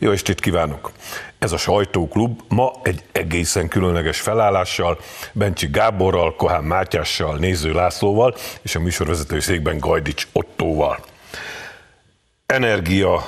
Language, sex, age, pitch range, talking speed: Hungarian, male, 50-69, 90-115 Hz, 110 wpm